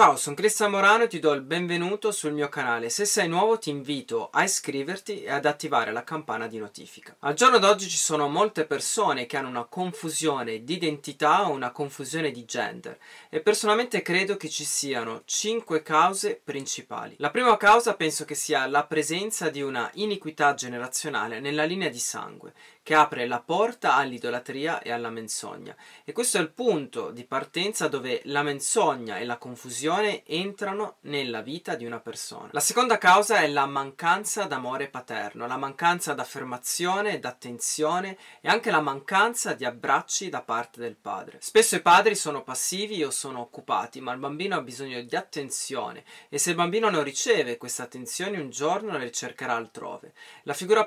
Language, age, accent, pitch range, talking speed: Italian, 30-49, native, 135-185 Hz, 175 wpm